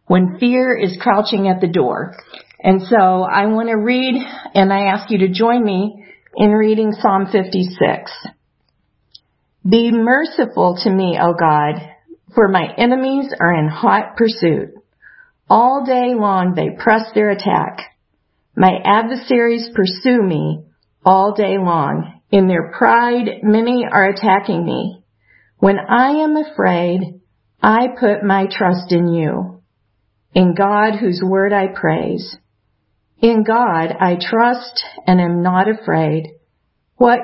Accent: American